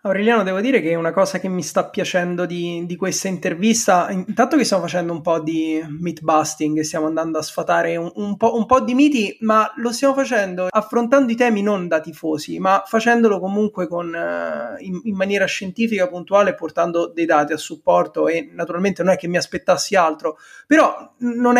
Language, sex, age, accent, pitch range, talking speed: Italian, male, 20-39, native, 165-210 Hz, 190 wpm